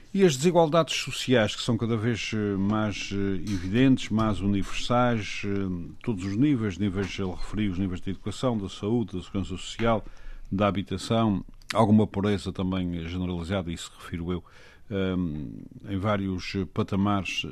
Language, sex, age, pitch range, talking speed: Portuguese, male, 50-69, 90-110 Hz, 135 wpm